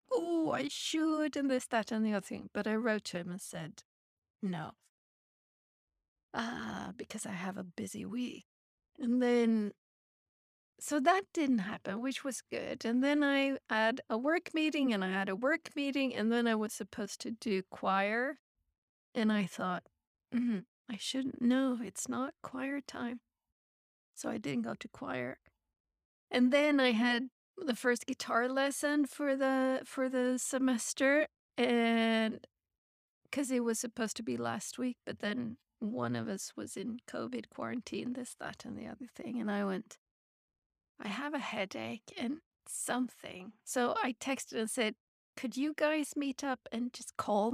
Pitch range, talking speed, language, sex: 205-265 Hz, 165 wpm, English, female